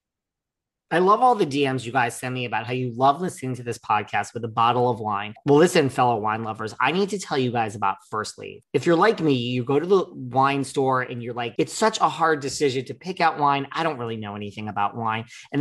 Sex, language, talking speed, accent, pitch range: male, English, 255 wpm, American, 120-150 Hz